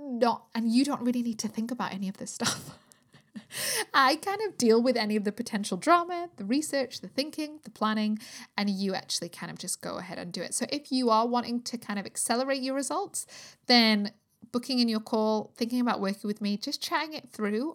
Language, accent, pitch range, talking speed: English, British, 210-270 Hz, 220 wpm